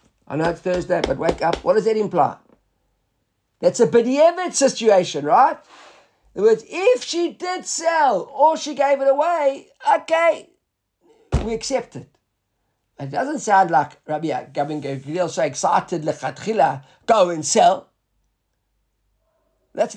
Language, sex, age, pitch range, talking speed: English, male, 50-69, 200-280 Hz, 135 wpm